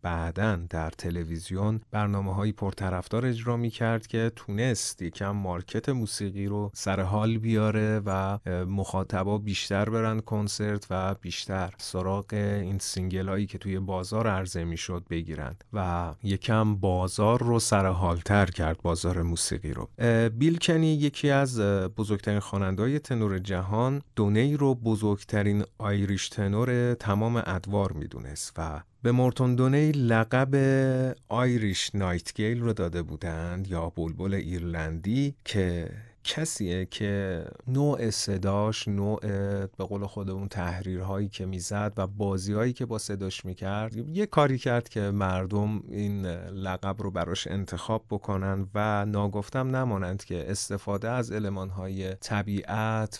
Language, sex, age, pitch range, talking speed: Persian, male, 30-49, 95-115 Hz, 120 wpm